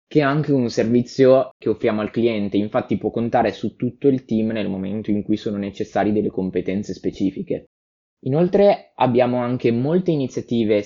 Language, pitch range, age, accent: Italian, 105-135 Hz, 20-39, native